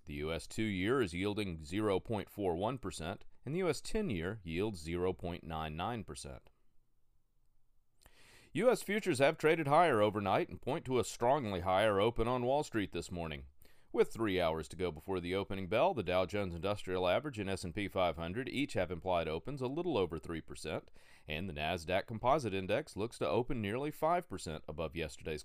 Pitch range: 85-130 Hz